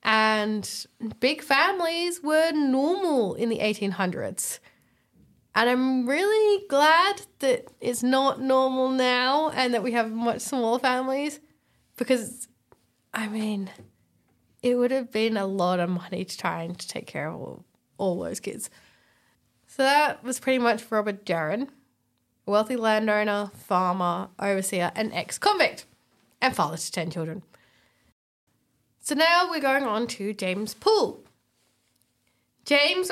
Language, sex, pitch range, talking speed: English, female, 210-275 Hz, 130 wpm